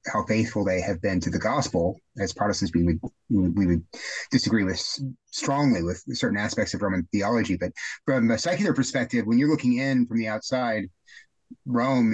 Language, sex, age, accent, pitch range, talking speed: English, male, 30-49, American, 105-130 Hz, 180 wpm